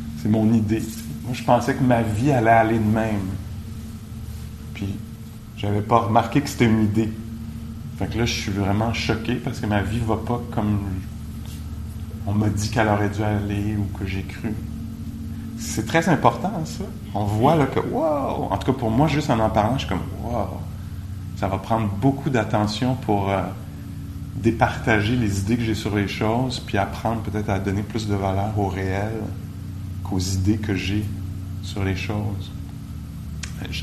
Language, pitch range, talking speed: English, 100-120 Hz, 175 wpm